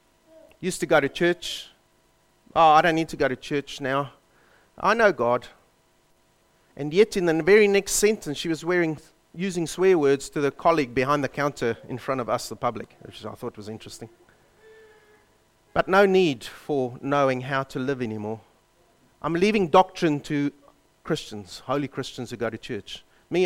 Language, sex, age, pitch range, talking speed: English, male, 30-49, 135-210 Hz, 175 wpm